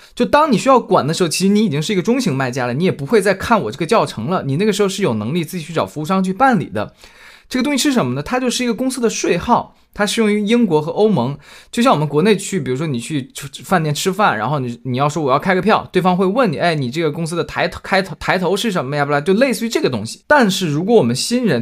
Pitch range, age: 140-220 Hz, 20-39